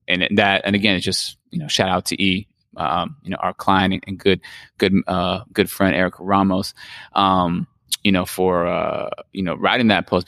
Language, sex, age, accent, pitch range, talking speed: English, male, 20-39, American, 90-100 Hz, 205 wpm